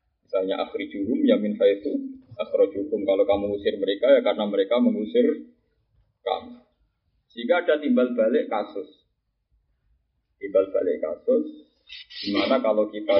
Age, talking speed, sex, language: 30-49, 125 wpm, male, Indonesian